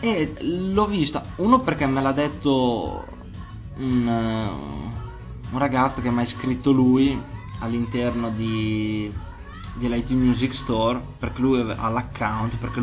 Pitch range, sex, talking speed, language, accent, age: 115-135 Hz, male, 125 wpm, Italian, native, 20-39